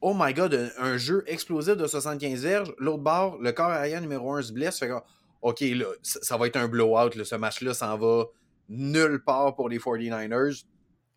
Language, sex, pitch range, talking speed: French, male, 115-155 Hz, 215 wpm